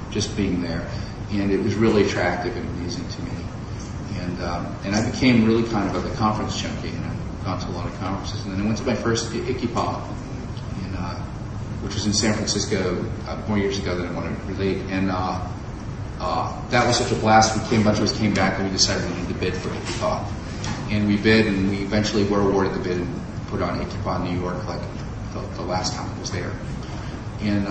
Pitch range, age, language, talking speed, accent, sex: 95-110 Hz, 40-59, English, 230 wpm, American, male